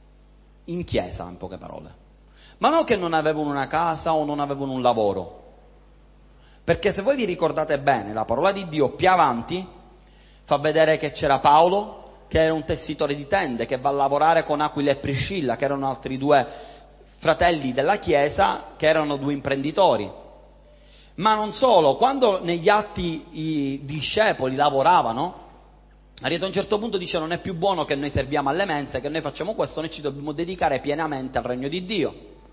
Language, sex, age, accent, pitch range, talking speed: Italian, male, 30-49, native, 135-195 Hz, 175 wpm